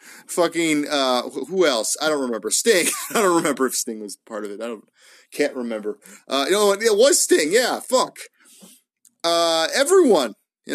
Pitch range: 140-210 Hz